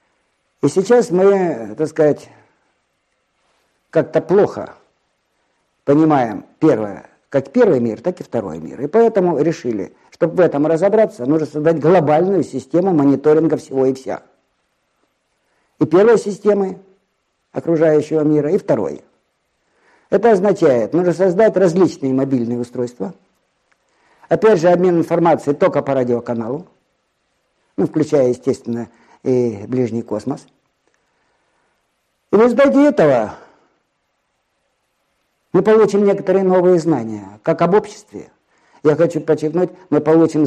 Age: 50-69